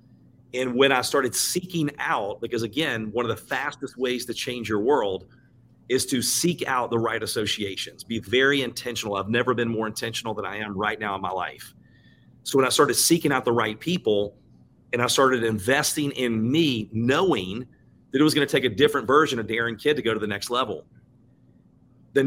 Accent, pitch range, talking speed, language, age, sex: American, 115-140 Hz, 200 wpm, English, 40-59, male